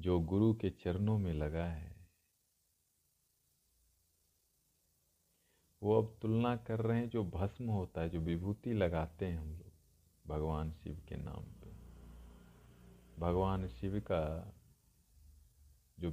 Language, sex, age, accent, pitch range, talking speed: Hindi, male, 50-69, native, 80-105 Hz, 120 wpm